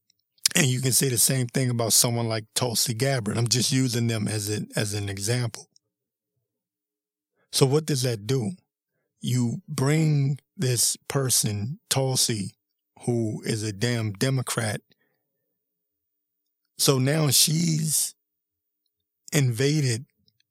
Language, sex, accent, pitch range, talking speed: English, male, American, 110-145 Hz, 115 wpm